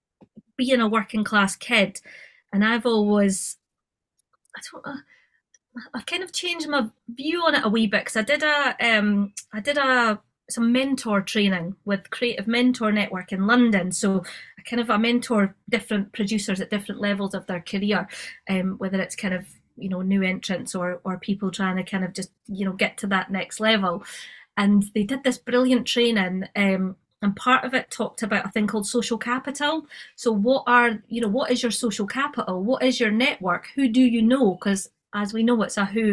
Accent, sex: British, female